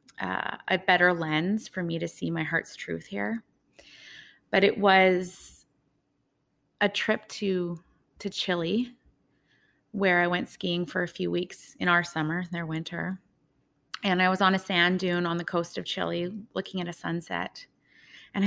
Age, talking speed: 20-39, 160 wpm